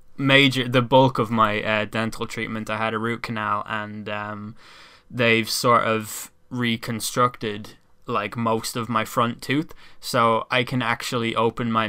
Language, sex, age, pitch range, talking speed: English, male, 10-29, 110-130 Hz, 155 wpm